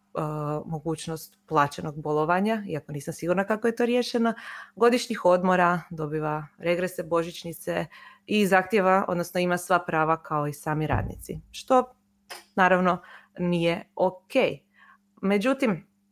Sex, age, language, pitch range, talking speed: female, 20-39, Croatian, 155-195 Hz, 110 wpm